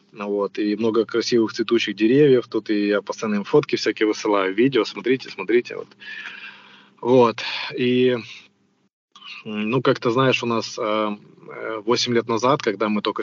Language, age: Ukrainian, 20-39